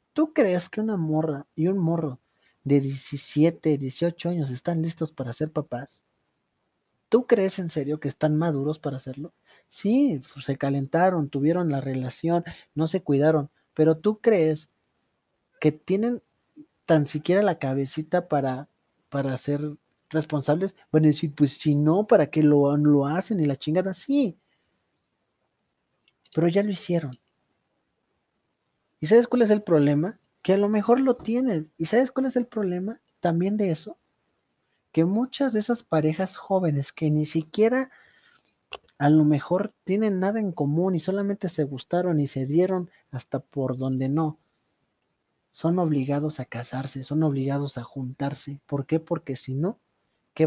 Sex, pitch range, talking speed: male, 140-185 Hz, 150 wpm